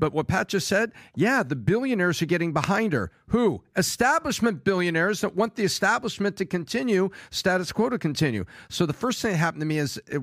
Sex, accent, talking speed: male, American, 205 wpm